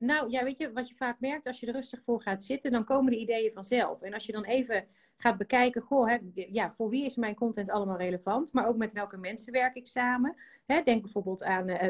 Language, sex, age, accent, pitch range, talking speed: Dutch, female, 30-49, Dutch, 195-245 Hz, 250 wpm